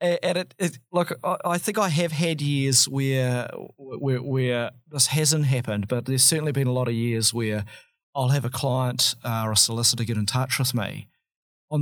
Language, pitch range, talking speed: English, 125-180 Hz, 195 wpm